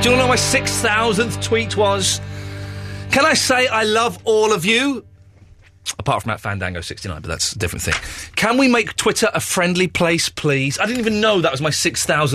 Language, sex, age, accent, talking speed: English, male, 30-49, British, 200 wpm